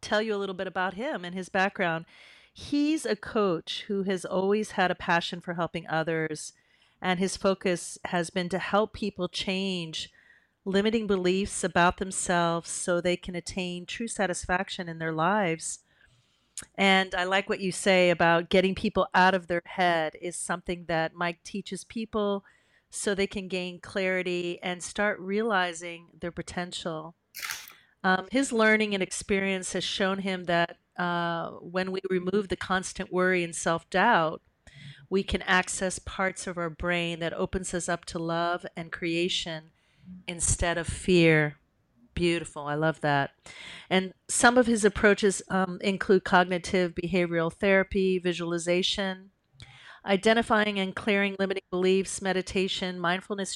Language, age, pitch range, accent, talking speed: English, 40-59, 170-195 Hz, American, 150 wpm